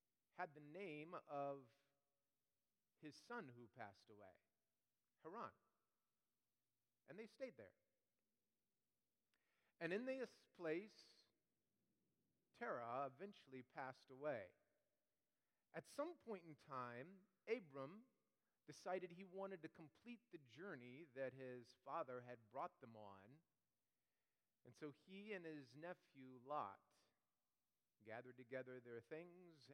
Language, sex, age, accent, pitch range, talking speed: English, male, 40-59, American, 120-160 Hz, 105 wpm